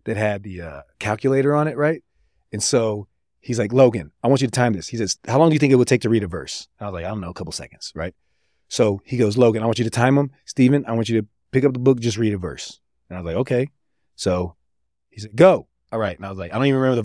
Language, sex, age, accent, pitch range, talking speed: English, male, 30-49, American, 110-155 Hz, 305 wpm